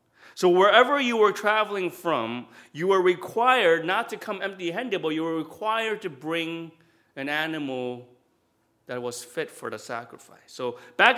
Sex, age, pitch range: male, 30-49, 150-210 Hz